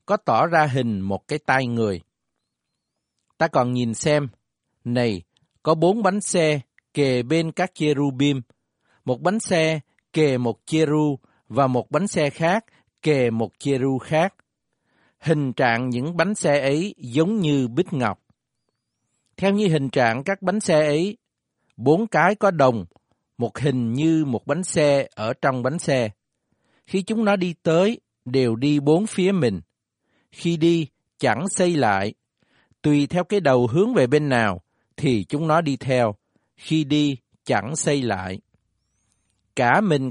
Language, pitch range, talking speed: Vietnamese, 125-170 Hz, 155 wpm